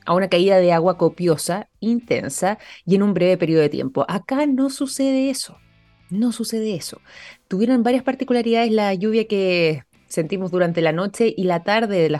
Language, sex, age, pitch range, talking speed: Spanish, female, 20-39, 160-205 Hz, 175 wpm